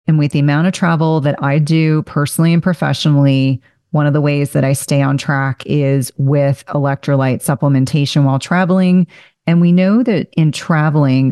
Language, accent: English, American